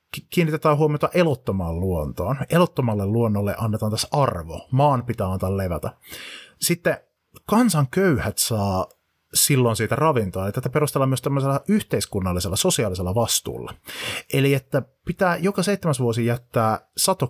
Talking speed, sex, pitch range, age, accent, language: 125 wpm, male, 110-145 Hz, 30-49, native, Finnish